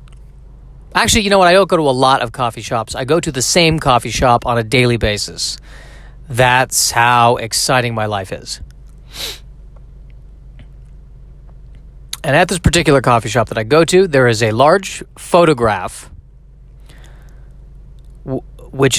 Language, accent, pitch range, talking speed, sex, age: English, American, 120-150 Hz, 145 wpm, male, 30-49